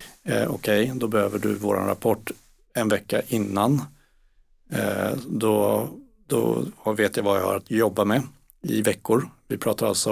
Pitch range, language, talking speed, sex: 100-115 Hz, Swedish, 140 wpm, male